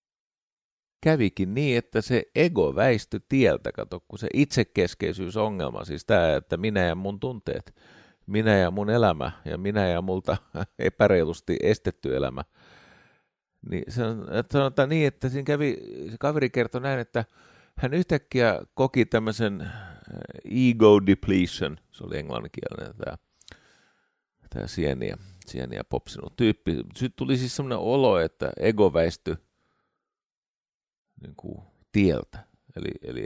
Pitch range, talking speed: 95-125 Hz, 125 wpm